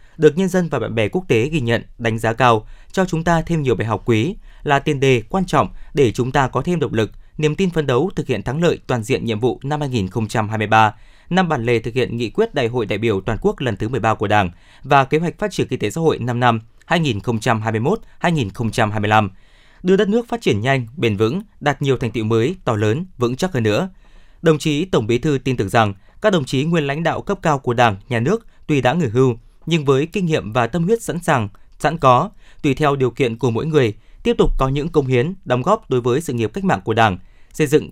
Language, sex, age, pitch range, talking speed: Vietnamese, male, 20-39, 115-160 Hz, 250 wpm